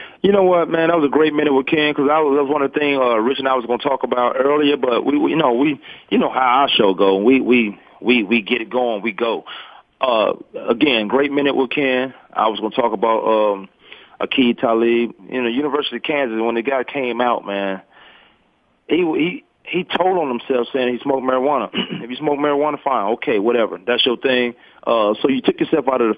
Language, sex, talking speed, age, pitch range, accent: English, male, 235 wpm, 40-59, 115-145 Hz, American